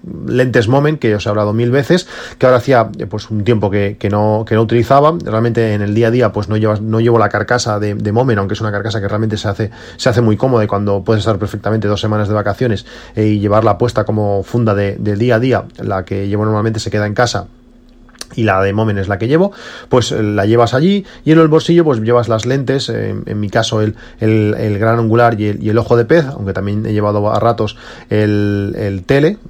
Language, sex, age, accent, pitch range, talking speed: Spanish, male, 30-49, Spanish, 105-120 Hz, 245 wpm